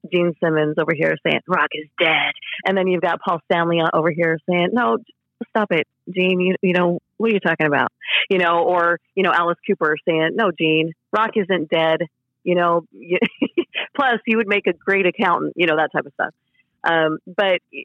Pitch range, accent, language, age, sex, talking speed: 160-200 Hz, American, English, 30-49, female, 200 wpm